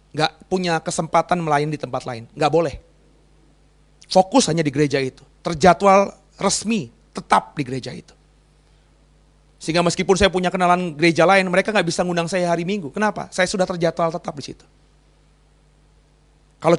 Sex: male